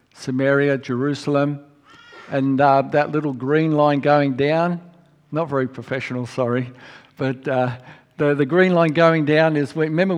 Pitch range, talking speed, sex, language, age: 130-160 Hz, 145 wpm, male, English, 50-69